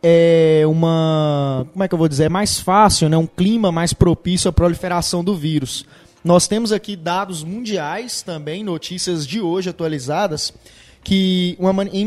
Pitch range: 160-205 Hz